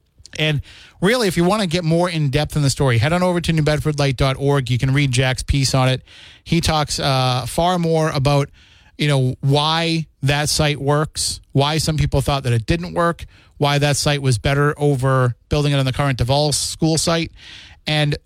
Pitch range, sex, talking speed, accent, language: 130-155 Hz, male, 195 wpm, American, English